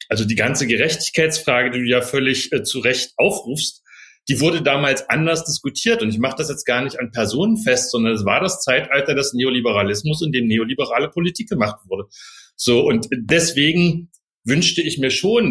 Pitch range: 130-165 Hz